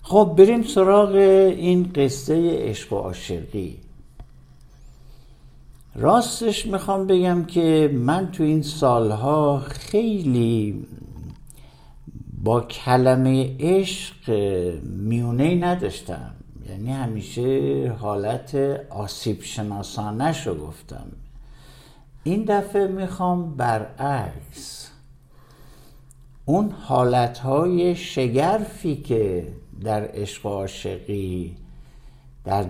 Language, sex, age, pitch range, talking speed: Persian, male, 60-79, 100-155 Hz, 75 wpm